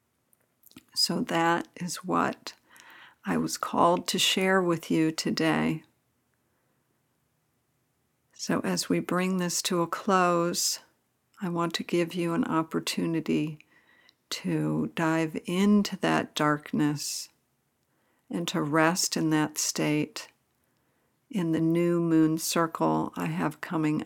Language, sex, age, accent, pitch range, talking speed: English, female, 60-79, American, 145-170 Hz, 115 wpm